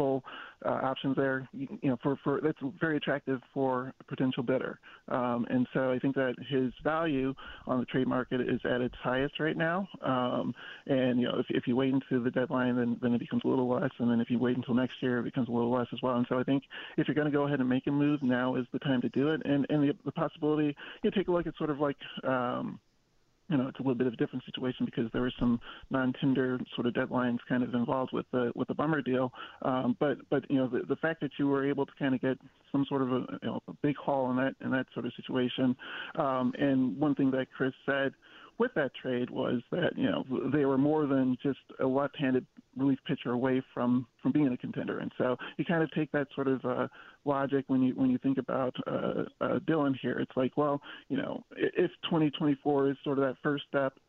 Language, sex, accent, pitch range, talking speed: English, male, American, 125-145 Hz, 250 wpm